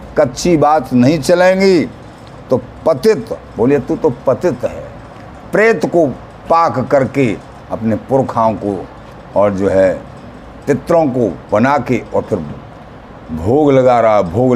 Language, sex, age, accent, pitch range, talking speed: Hindi, male, 60-79, native, 120-185 Hz, 130 wpm